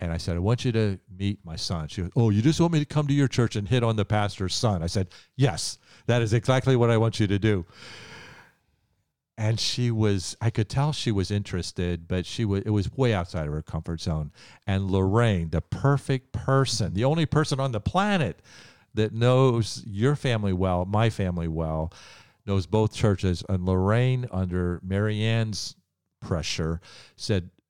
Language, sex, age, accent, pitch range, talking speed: English, male, 50-69, American, 90-115 Hz, 190 wpm